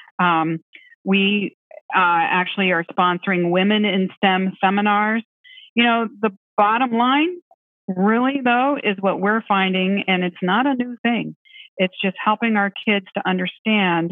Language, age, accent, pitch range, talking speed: English, 40-59, American, 180-245 Hz, 145 wpm